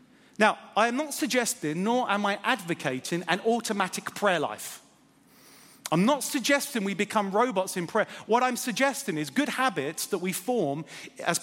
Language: English